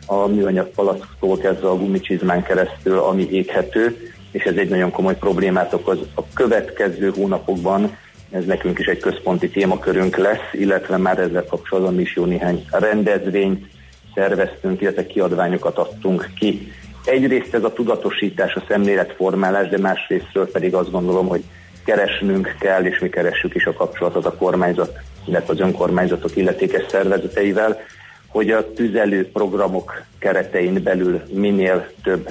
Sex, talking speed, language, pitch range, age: male, 135 wpm, Hungarian, 90-100 Hz, 40-59